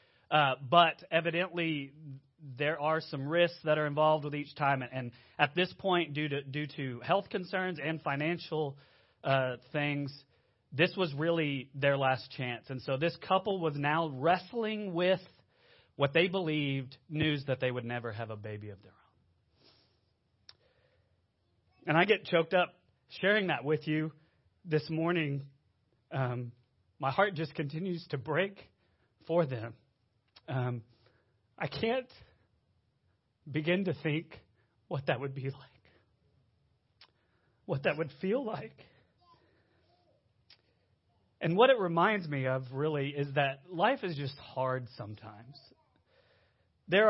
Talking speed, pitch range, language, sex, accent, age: 135 wpm, 125-170 Hz, English, male, American, 30-49